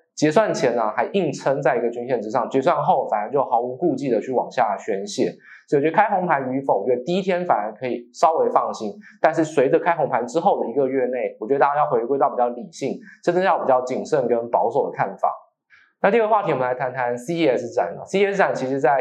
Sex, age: male, 20-39